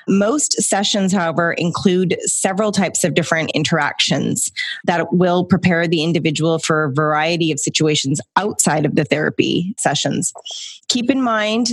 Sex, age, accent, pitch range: female, 20-39, American, 165-195 Hz